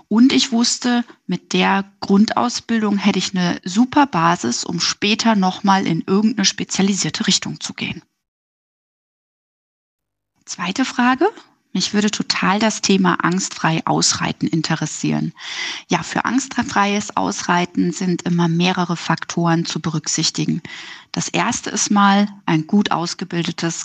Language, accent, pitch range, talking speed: German, German, 180-230 Hz, 120 wpm